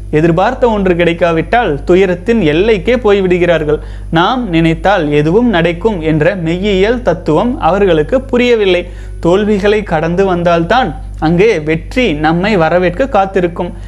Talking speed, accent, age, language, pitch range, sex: 100 wpm, native, 30-49, Tamil, 160-210 Hz, male